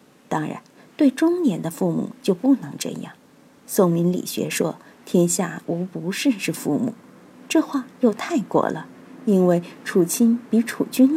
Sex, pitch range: female, 185-265 Hz